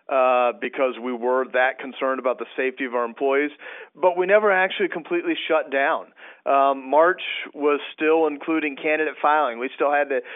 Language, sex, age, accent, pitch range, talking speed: English, male, 40-59, American, 125-145 Hz, 175 wpm